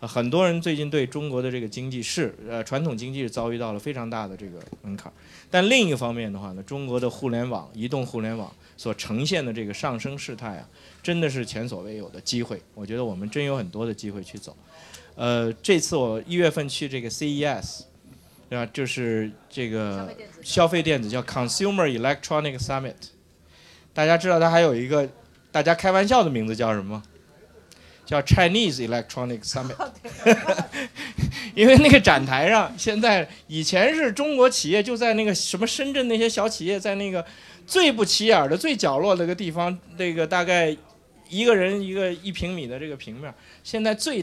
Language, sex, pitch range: Chinese, male, 115-185 Hz